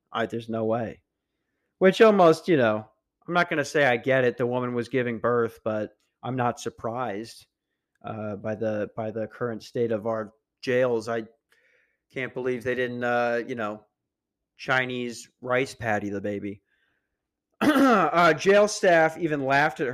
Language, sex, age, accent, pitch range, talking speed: English, male, 40-59, American, 120-160 Hz, 155 wpm